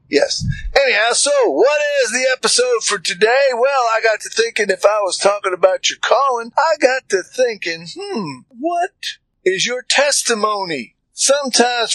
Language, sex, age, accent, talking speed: English, male, 50-69, American, 155 wpm